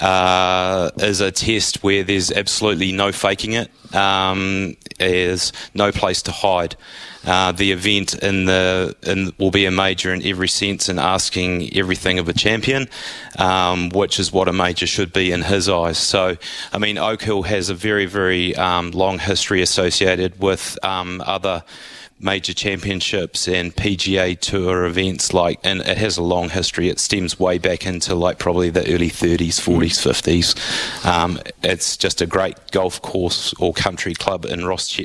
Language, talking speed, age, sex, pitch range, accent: English, 170 wpm, 30-49, male, 90-100 Hz, Australian